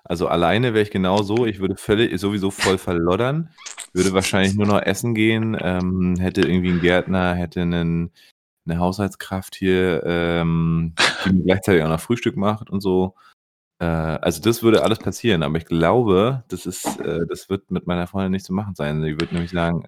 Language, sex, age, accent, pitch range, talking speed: German, male, 30-49, German, 85-100 Hz, 185 wpm